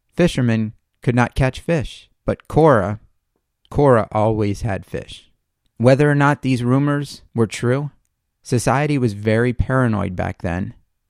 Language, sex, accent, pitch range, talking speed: English, male, American, 95-125 Hz, 130 wpm